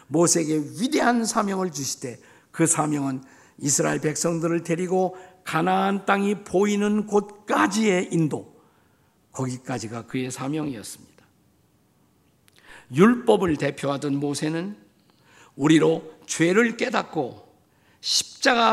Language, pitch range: Korean, 145-190 Hz